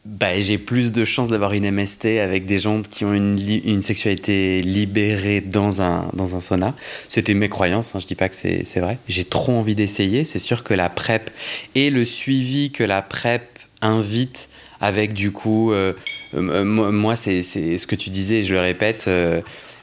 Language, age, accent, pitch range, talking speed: French, 20-39, French, 100-115 Hz, 205 wpm